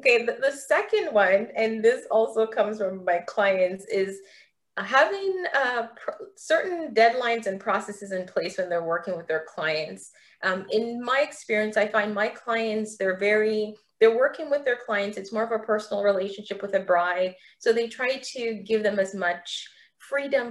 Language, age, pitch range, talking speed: English, 20-39, 185-230 Hz, 180 wpm